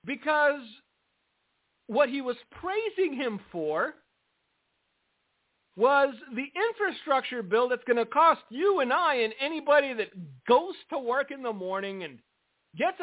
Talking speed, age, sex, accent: 135 wpm, 50-69, male, American